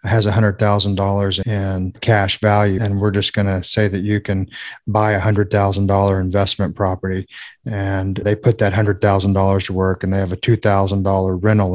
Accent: American